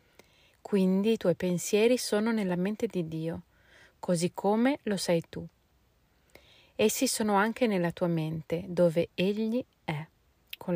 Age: 30-49